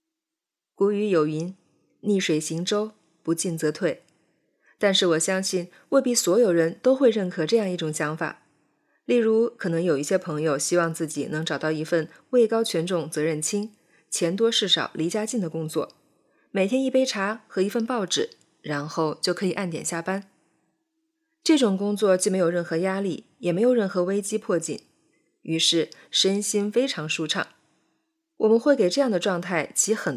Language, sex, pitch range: Chinese, female, 165-220 Hz